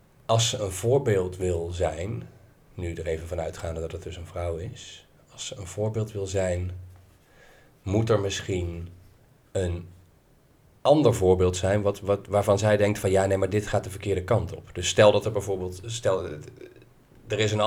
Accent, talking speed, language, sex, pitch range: Dutch, 185 wpm, Dutch, male, 95-115 Hz